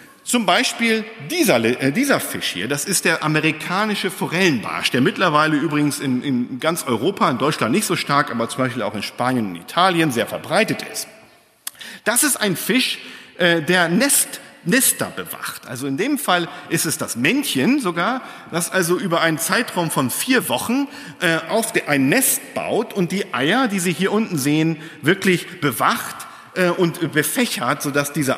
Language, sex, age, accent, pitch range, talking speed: German, male, 50-69, German, 155-230 Hz, 170 wpm